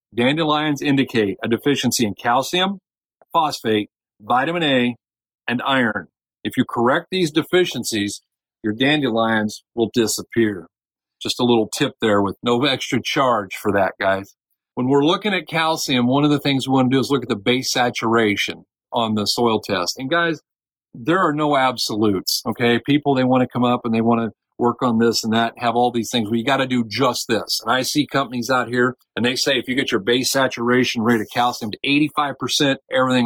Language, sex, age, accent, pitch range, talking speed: English, male, 50-69, American, 115-135 Hz, 195 wpm